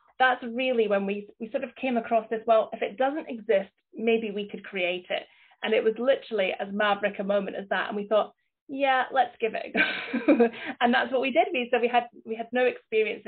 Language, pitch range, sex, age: English, 190-225 Hz, female, 30-49